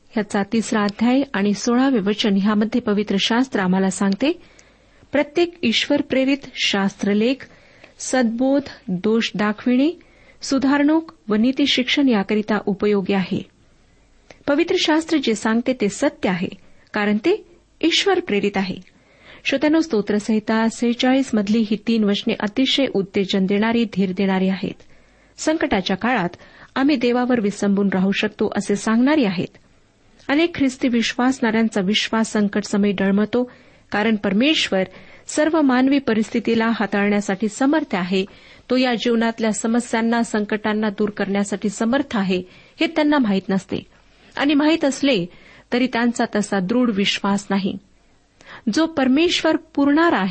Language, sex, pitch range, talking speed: Marathi, female, 205-270 Hz, 100 wpm